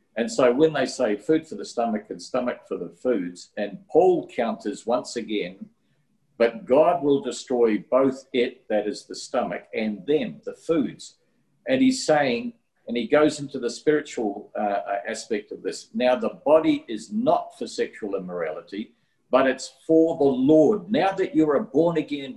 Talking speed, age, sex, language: 175 wpm, 50-69, male, English